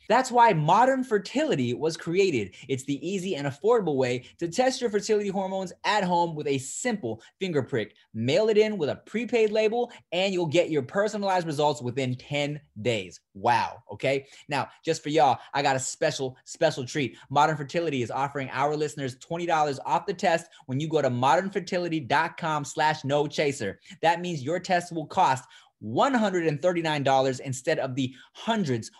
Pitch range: 130-185 Hz